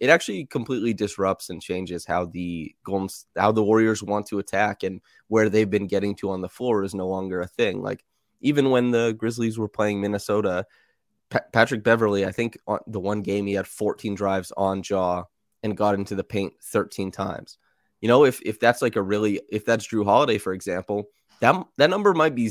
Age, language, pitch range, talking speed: 20-39, English, 95-110 Hz, 200 wpm